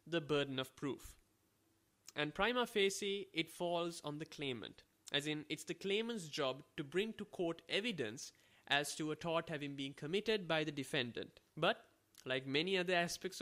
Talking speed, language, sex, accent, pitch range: 170 wpm, English, male, Indian, 135-180 Hz